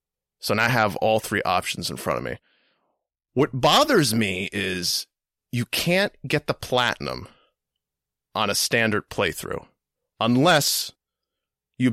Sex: male